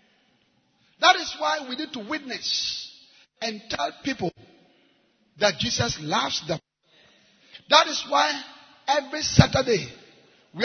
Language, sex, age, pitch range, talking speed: English, male, 50-69, 215-295 Hz, 115 wpm